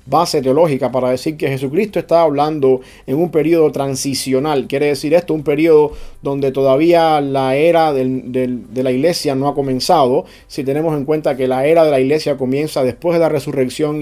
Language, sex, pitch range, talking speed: English, male, 130-165 Hz, 180 wpm